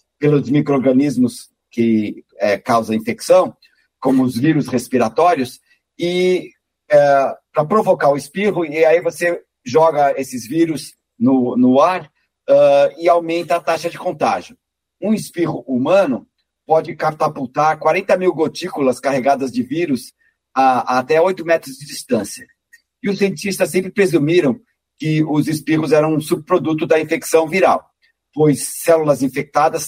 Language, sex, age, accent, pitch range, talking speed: Portuguese, male, 50-69, Brazilian, 140-190 Hz, 135 wpm